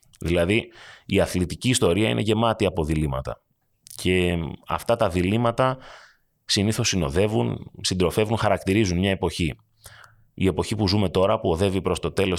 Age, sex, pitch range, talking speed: 30-49, male, 85-105 Hz, 135 wpm